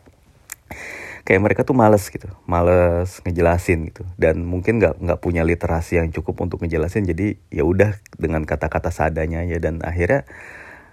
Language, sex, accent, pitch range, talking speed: Indonesian, male, native, 80-95 Hz, 150 wpm